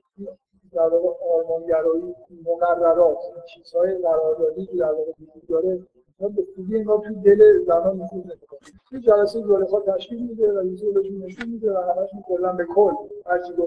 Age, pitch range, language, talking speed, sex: 50-69, 170-210 Hz, Persian, 75 wpm, male